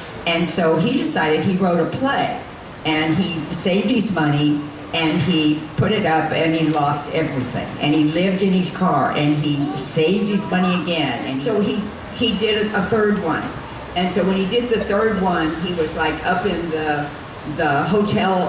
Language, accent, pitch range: English, American, 155-185 Hz